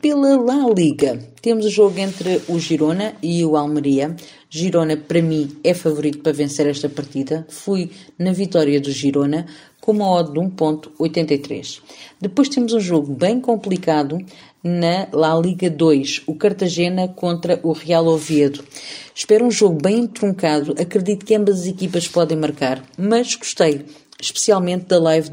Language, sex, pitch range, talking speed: Portuguese, female, 150-185 Hz, 150 wpm